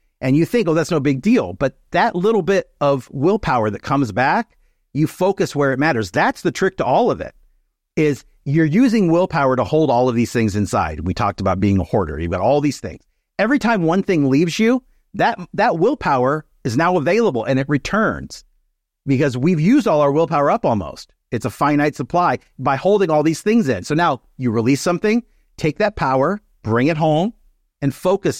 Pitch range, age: 125-185 Hz, 50-69